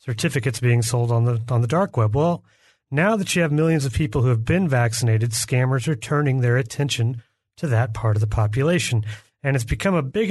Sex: male